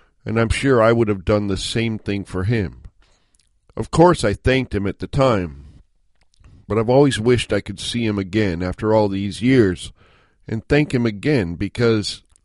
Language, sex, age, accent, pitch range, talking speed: English, male, 50-69, American, 95-125 Hz, 185 wpm